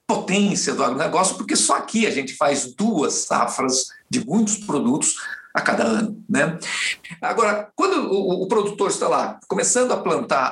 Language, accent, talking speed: Portuguese, Brazilian, 160 wpm